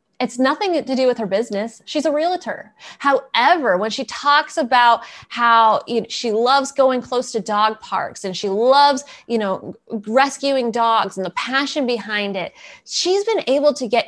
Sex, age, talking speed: female, 20-39, 170 wpm